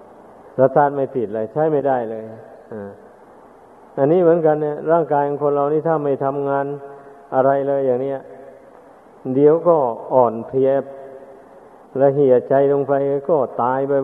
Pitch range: 130-145 Hz